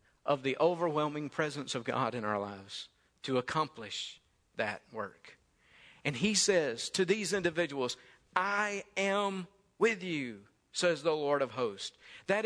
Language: English